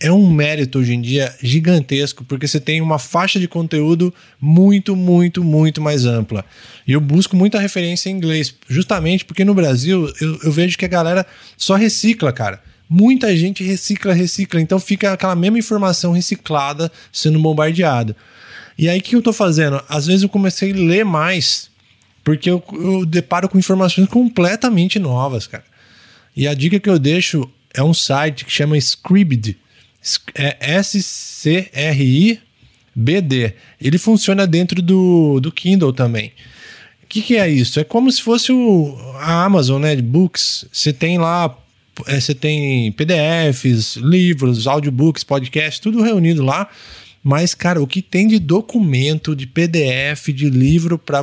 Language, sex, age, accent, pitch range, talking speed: Portuguese, male, 20-39, Brazilian, 140-185 Hz, 160 wpm